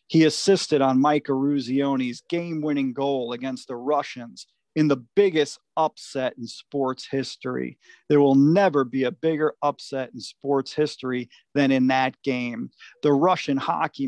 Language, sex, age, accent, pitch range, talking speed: English, male, 40-59, American, 130-150 Hz, 145 wpm